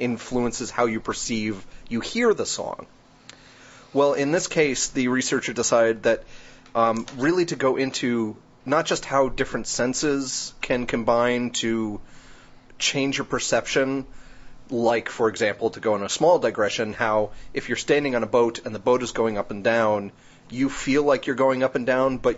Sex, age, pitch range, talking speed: male, 30-49, 115-135 Hz, 175 wpm